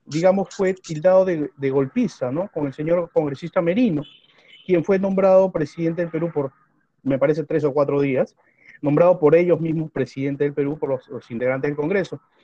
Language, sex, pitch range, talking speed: English, male, 145-190 Hz, 185 wpm